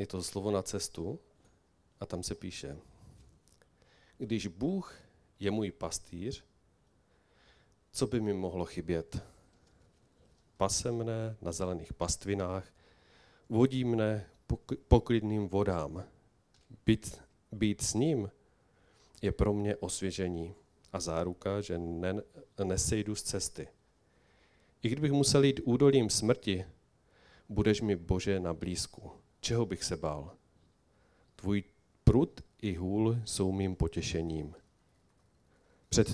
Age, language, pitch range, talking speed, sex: 40-59, Czech, 85-110 Hz, 110 wpm, male